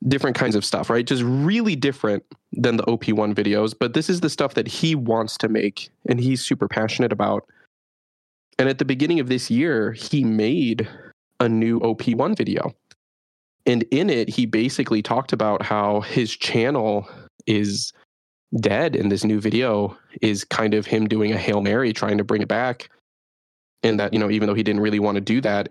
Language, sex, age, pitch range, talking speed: English, male, 20-39, 105-120 Hz, 190 wpm